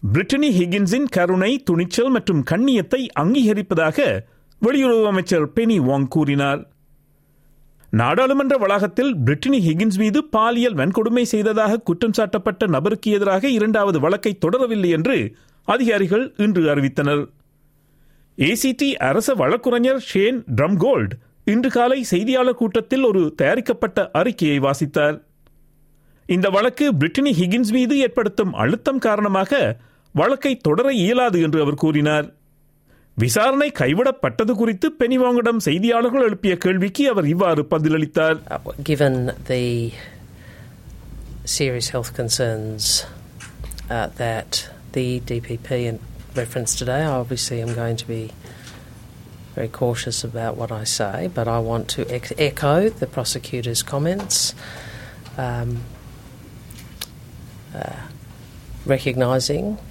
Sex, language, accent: male, Tamil, native